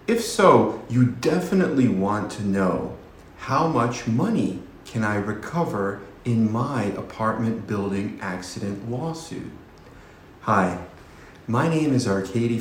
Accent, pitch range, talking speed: American, 100-130 Hz, 115 wpm